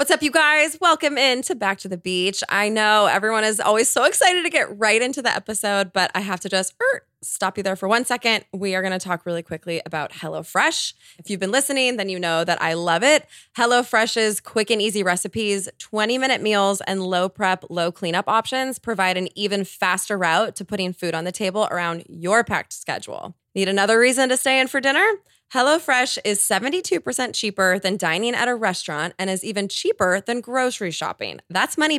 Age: 20-39